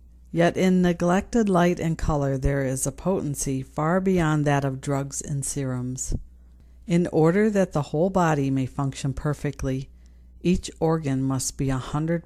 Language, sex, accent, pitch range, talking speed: English, female, American, 130-160 Hz, 155 wpm